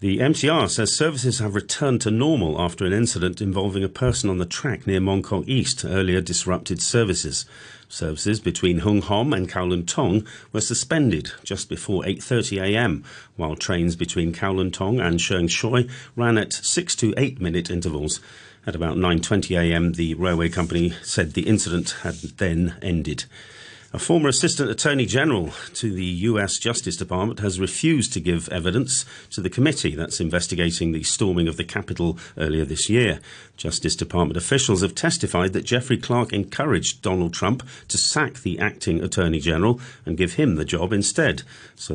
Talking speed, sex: 165 wpm, male